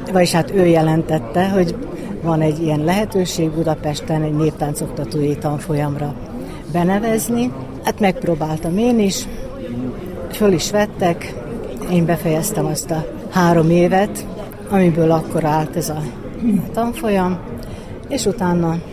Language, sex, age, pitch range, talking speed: Hungarian, female, 60-79, 155-190 Hz, 110 wpm